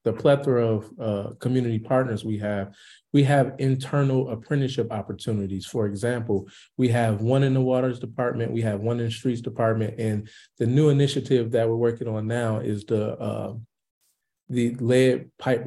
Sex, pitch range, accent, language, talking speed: male, 115-130 Hz, American, English, 170 wpm